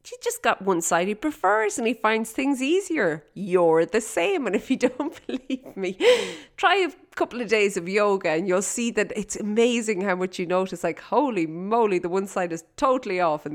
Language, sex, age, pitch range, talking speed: English, female, 30-49, 165-220 Hz, 215 wpm